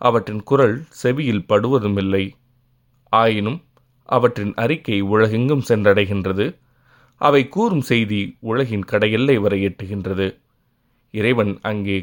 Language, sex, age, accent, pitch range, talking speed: Tamil, male, 30-49, native, 100-125 Hz, 90 wpm